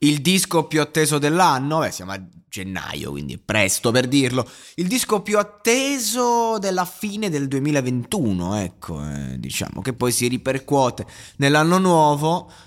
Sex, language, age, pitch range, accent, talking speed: male, Italian, 20-39, 125-165 Hz, native, 145 wpm